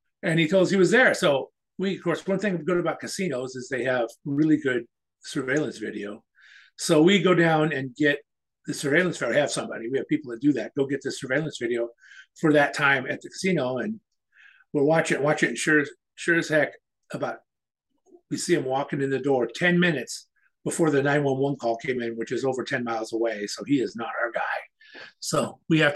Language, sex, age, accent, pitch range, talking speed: English, male, 50-69, American, 140-185 Hz, 210 wpm